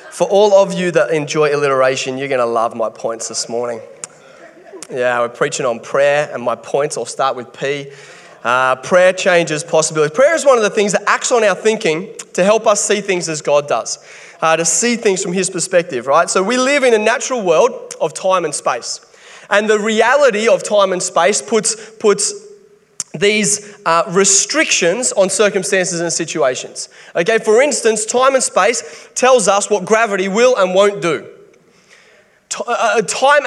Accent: Australian